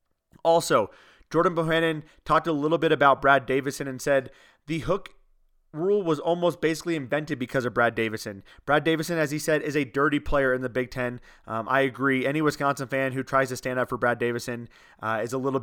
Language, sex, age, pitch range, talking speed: English, male, 30-49, 130-160 Hz, 205 wpm